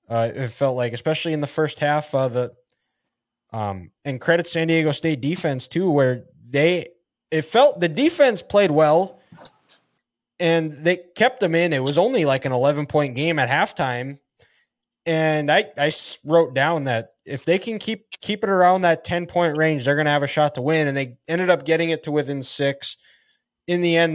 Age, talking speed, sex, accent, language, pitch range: 20-39, 195 wpm, male, American, English, 140-165 Hz